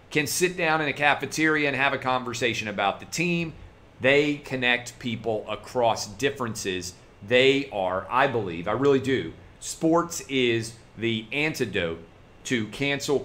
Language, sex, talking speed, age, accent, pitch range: English, male, 140 wpm, 40-59, American, 110-140 Hz